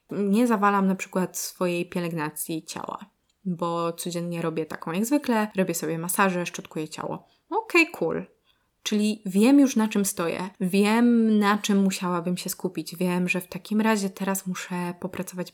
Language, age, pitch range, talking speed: Polish, 20-39, 175-205 Hz, 155 wpm